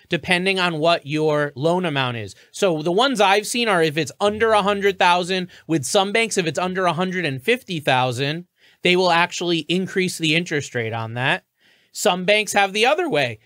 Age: 30-49